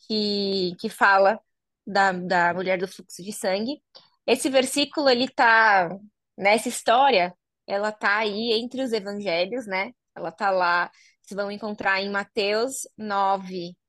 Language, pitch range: Portuguese, 185-220 Hz